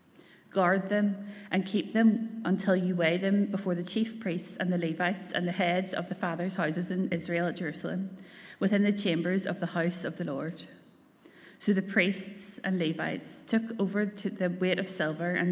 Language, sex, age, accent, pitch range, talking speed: English, female, 20-39, Irish, 170-190 Hz, 185 wpm